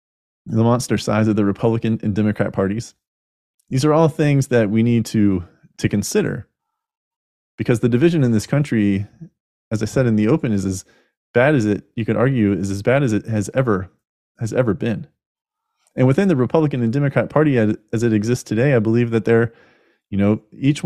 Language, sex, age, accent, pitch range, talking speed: English, male, 30-49, American, 105-130 Hz, 195 wpm